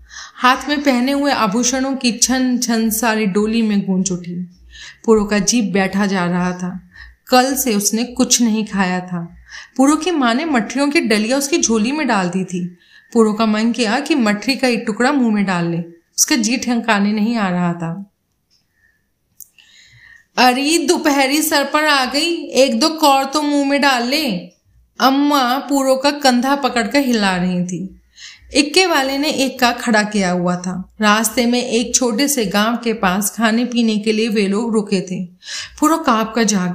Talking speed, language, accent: 180 wpm, Hindi, native